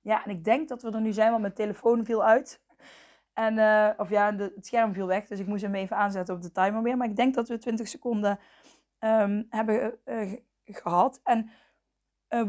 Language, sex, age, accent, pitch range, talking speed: Dutch, female, 20-39, Dutch, 185-220 Hz, 215 wpm